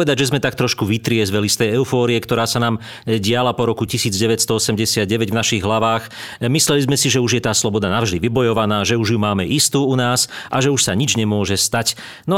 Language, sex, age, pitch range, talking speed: Slovak, male, 40-59, 100-130 Hz, 210 wpm